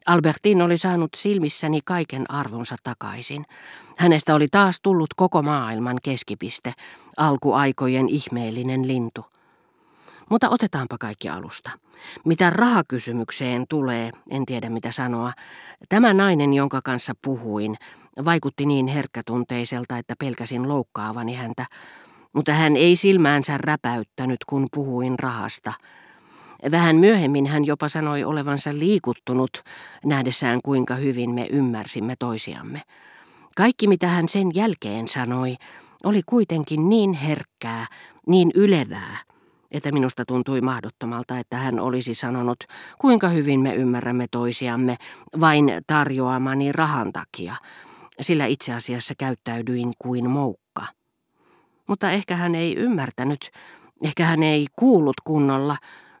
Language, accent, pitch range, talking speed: Finnish, native, 125-160 Hz, 115 wpm